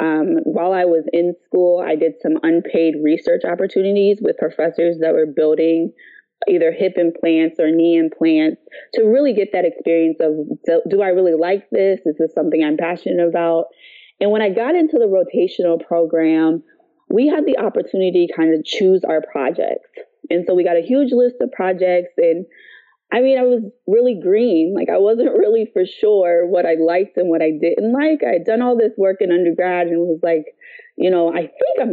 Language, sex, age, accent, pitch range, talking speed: English, female, 20-39, American, 165-225 Hz, 195 wpm